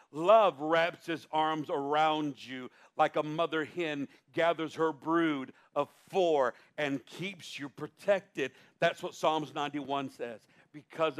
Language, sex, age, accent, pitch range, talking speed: English, male, 50-69, American, 145-175 Hz, 135 wpm